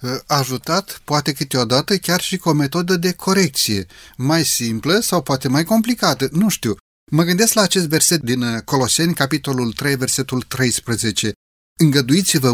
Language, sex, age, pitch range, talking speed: Romanian, male, 30-49, 125-175 Hz, 150 wpm